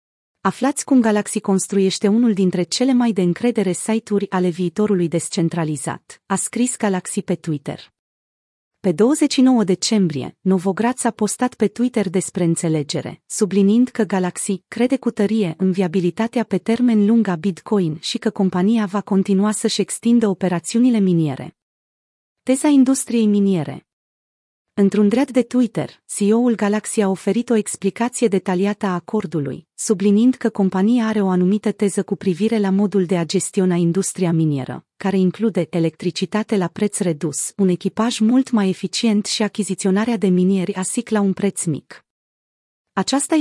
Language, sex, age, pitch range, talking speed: Romanian, female, 30-49, 180-225 Hz, 140 wpm